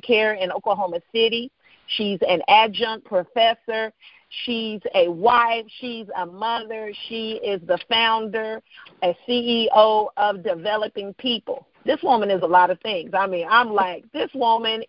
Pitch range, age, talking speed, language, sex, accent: 205-255 Hz, 40-59, 145 wpm, English, female, American